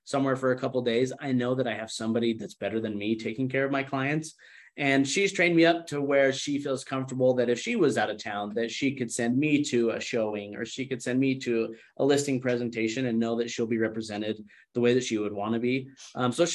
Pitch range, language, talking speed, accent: 115-135 Hz, English, 260 wpm, American